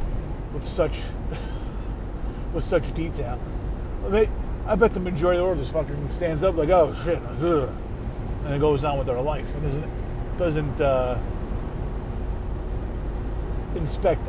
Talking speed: 135 wpm